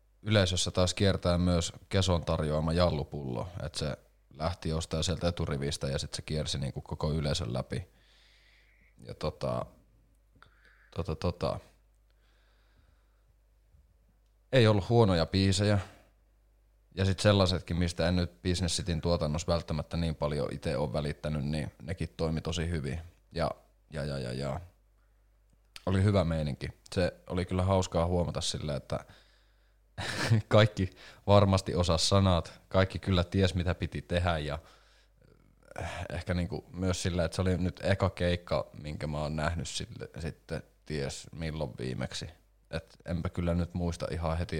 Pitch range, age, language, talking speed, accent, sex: 80-100 Hz, 30-49, Finnish, 135 wpm, native, male